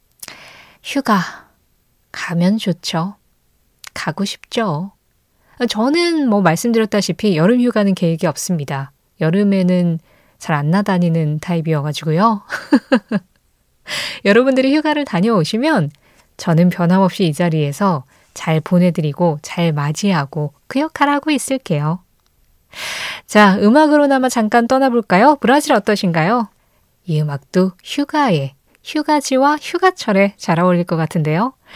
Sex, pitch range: female, 160-245 Hz